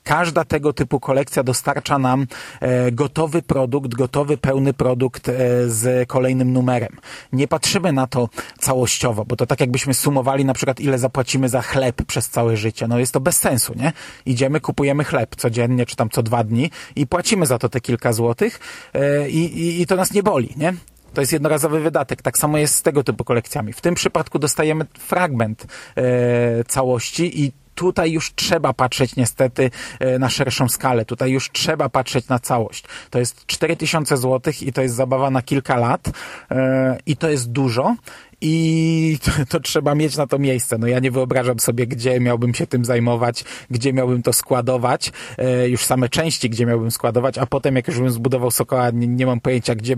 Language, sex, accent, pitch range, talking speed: Polish, male, native, 125-145 Hz, 180 wpm